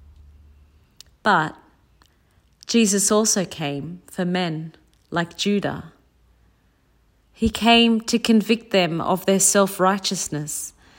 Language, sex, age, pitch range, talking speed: English, female, 40-59, 180-235 Hz, 85 wpm